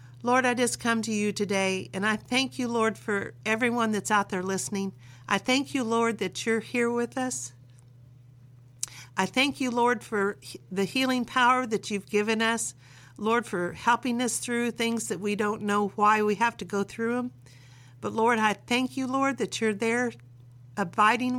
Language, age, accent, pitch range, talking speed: English, 50-69, American, 150-230 Hz, 190 wpm